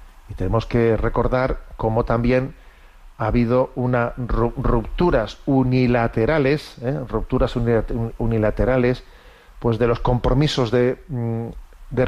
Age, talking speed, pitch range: 40-59, 100 wpm, 110-130 Hz